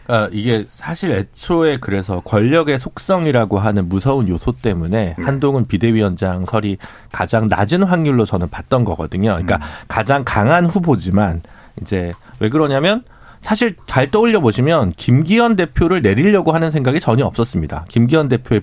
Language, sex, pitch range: Korean, male, 105-170 Hz